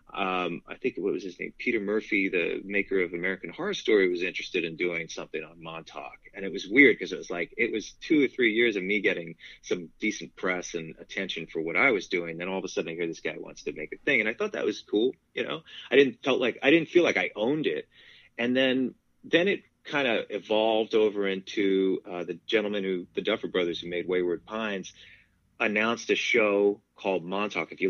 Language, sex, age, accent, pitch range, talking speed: English, male, 30-49, American, 95-155 Hz, 235 wpm